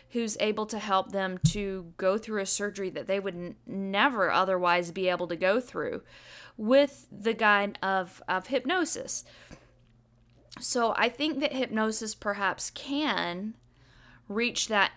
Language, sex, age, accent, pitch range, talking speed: English, female, 10-29, American, 190-245 Hz, 140 wpm